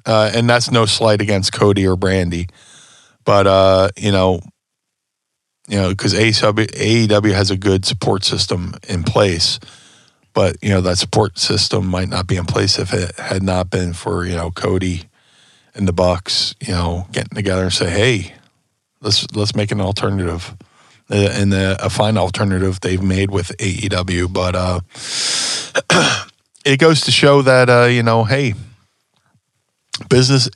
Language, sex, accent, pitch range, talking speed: English, male, American, 95-115 Hz, 160 wpm